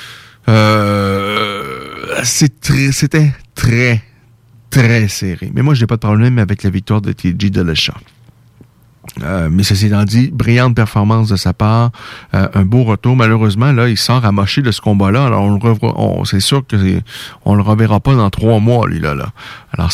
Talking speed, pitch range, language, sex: 180 wpm, 105-130 Hz, French, male